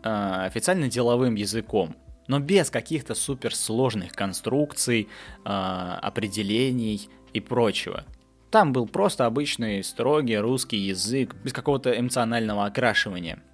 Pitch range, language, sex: 100-130 Hz, Russian, male